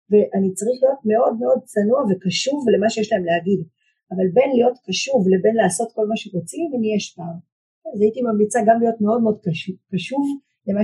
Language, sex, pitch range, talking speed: Hebrew, female, 185-235 Hz, 170 wpm